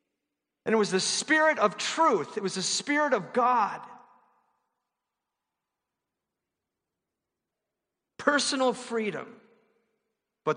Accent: American